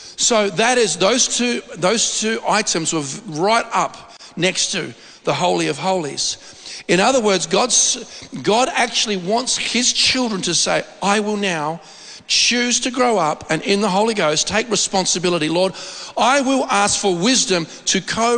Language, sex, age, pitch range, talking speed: English, male, 50-69, 185-240 Hz, 165 wpm